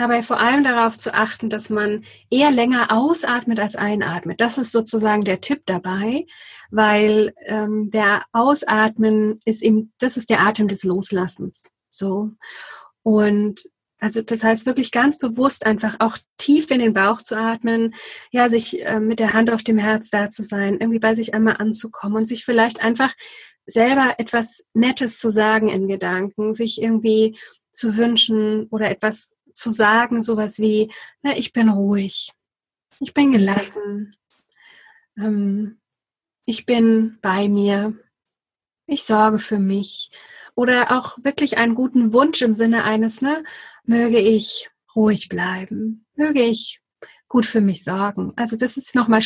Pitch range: 210-240 Hz